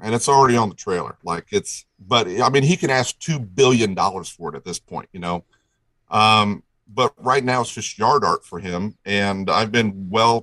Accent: American